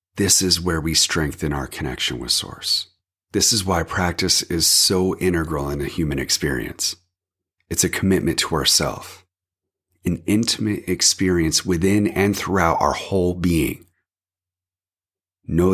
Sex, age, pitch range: male, 30-49, 80-95 Hz